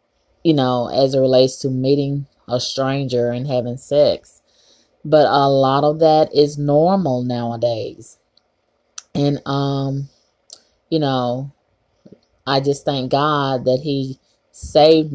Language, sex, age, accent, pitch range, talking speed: English, female, 20-39, American, 130-150 Hz, 125 wpm